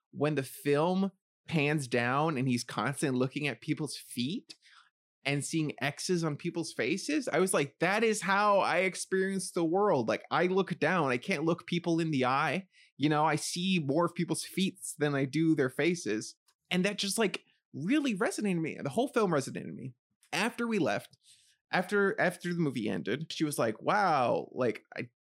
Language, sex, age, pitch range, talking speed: English, male, 20-39, 150-215 Hz, 190 wpm